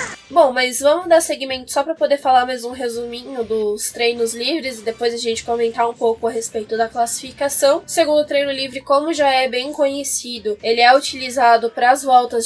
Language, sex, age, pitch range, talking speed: Portuguese, female, 10-29, 240-300 Hz, 195 wpm